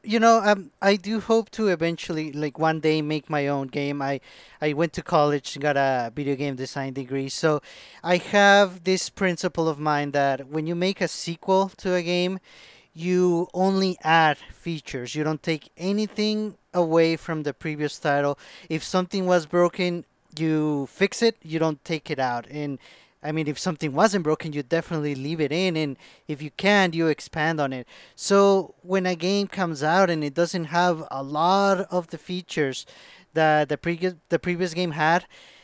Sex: male